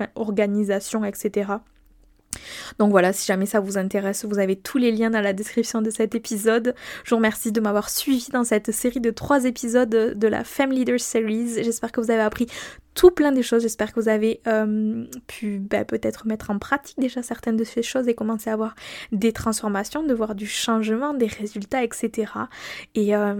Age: 10-29